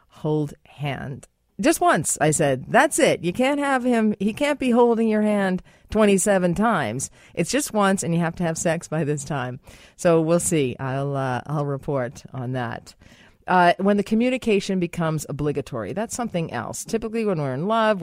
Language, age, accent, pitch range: English, 40-59, American, 140-205 Hz